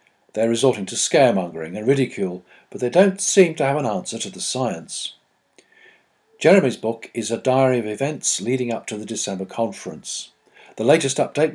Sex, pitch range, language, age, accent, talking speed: male, 110-150 Hz, English, 50-69, British, 170 wpm